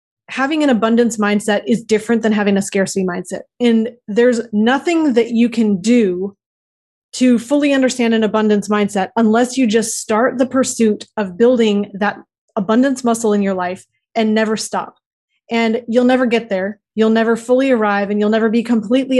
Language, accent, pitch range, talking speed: English, American, 205-235 Hz, 170 wpm